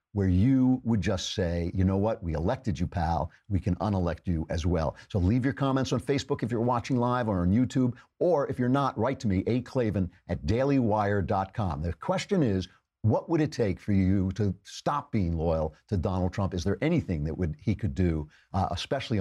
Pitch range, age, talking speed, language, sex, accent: 95-130 Hz, 50-69, 210 wpm, English, male, American